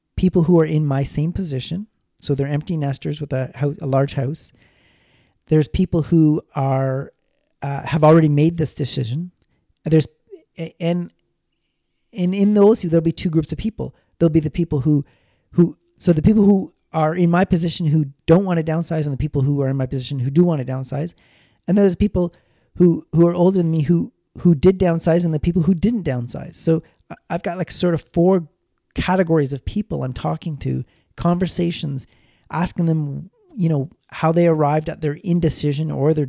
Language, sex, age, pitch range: English, male, 40-59, 140-175 Hz